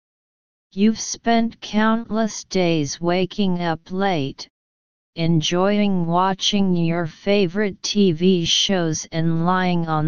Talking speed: 95 wpm